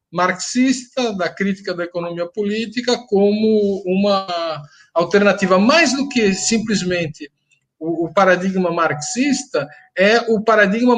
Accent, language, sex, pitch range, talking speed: Brazilian, Portuguese, male, 160-210 Hz, 110 wpm